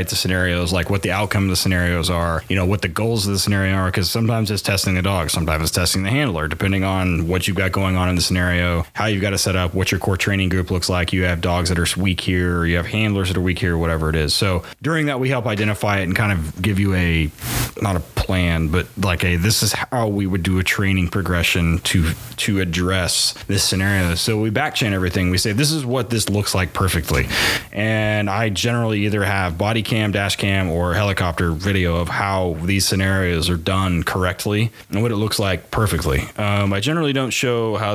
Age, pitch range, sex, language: 30-49, 90-105 Hz, male, English